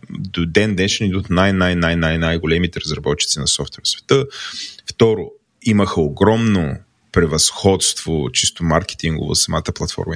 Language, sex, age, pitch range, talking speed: Bulgarian, male, 30-49, 85-110 Hz, 110 wpm